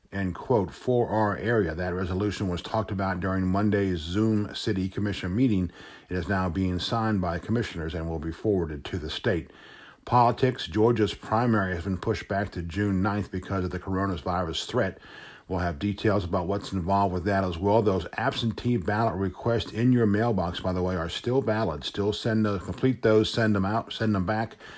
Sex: male